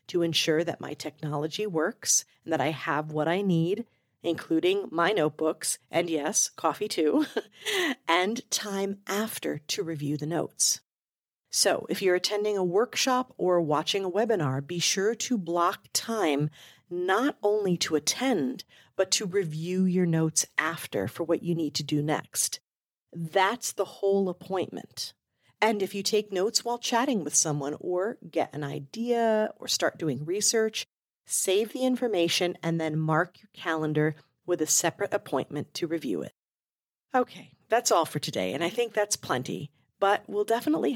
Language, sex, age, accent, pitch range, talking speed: English, female, 40-59, American, 155-210 Hz, 160 wpm